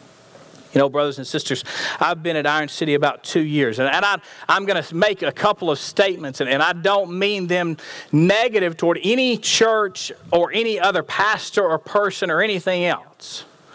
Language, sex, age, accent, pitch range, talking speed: English, male, 40-59, American, 170-215 Hz, 175 wpm